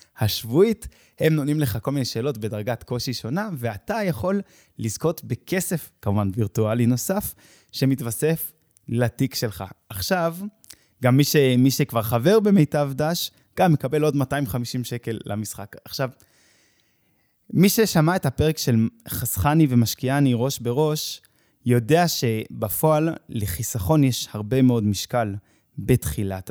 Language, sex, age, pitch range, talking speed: Hebrew, male, 20-39, 115-145 Hz, 120 wpm